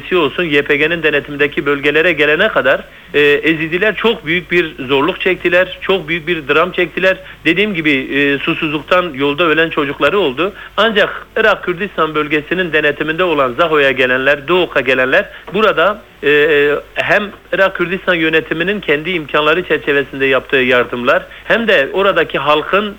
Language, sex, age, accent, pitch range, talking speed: Turkish, male, 50-69, native, 145-195 Hz, 130 wpm